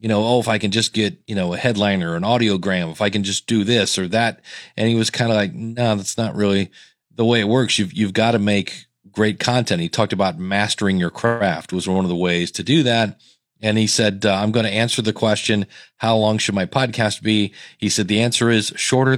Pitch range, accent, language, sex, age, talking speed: 100-115 Hz, American, English, male, 40-59, 250 wpm